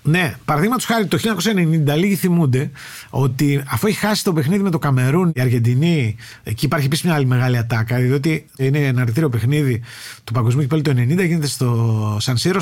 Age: 30-49